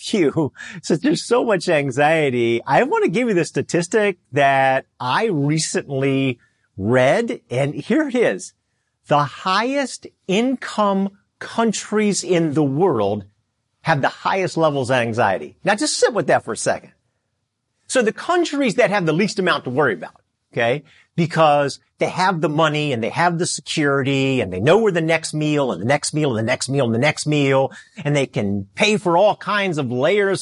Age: 50-69